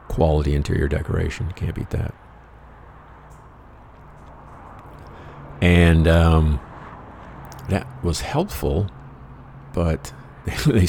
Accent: American